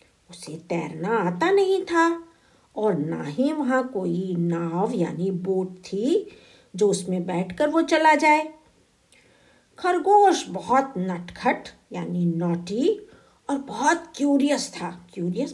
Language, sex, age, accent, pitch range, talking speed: Hindi, female, 50-69, native, 180-285 Hz, 110 wpm